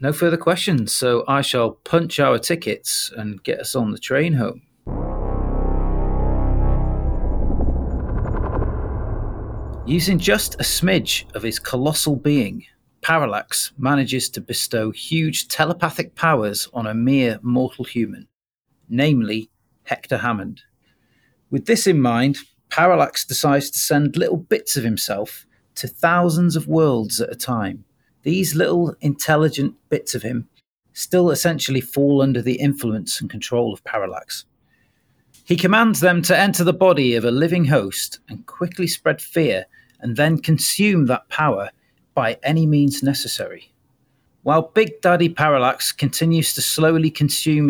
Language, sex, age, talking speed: English, male, 40-59, 135 wpm